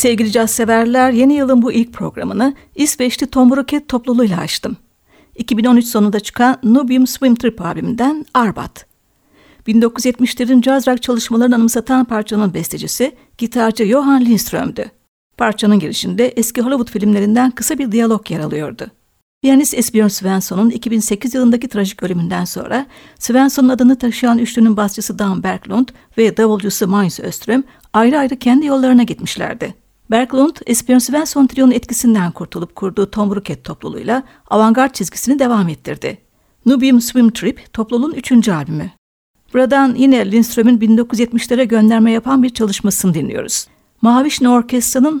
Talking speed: 120 wpm